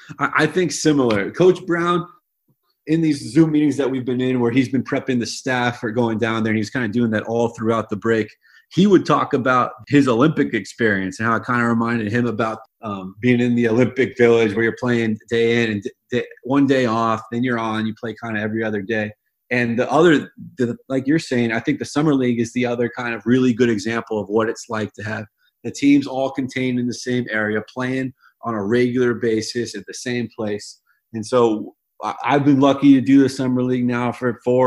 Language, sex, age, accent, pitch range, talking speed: English, male, 30-49, American, 110-125 Hz, 220 wpm